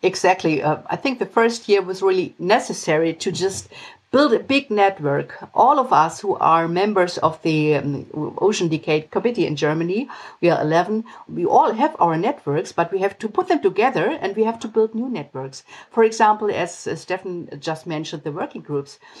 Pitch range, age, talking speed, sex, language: 165-230 Hz, 50-69, 195 wpm, female, English